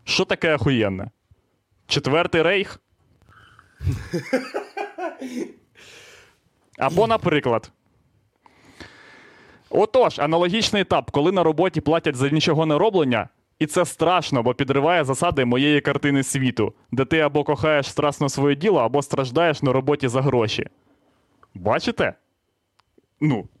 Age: 20-39